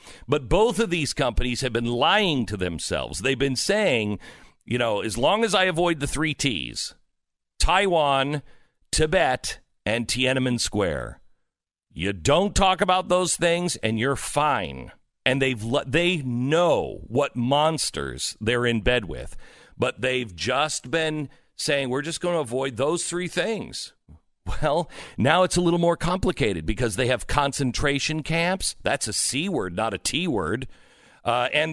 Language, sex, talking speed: English, male, 155 wpm